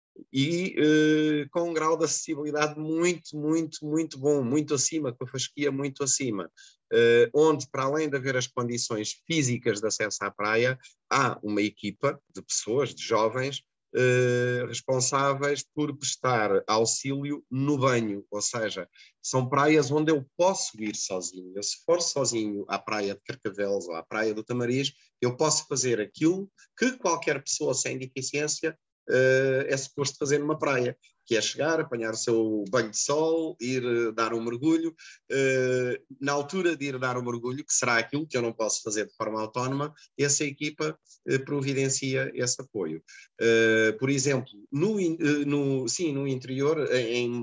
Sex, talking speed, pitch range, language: male, 165 wpm, 120-150 Hz, Portuguese